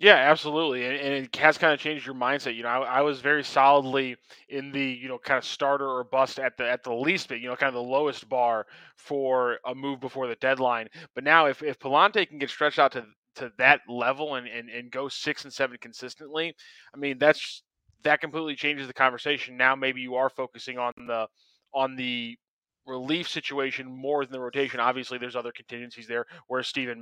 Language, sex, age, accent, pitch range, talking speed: English, male, 20-39, American, 125-145 Hz, 215 wpm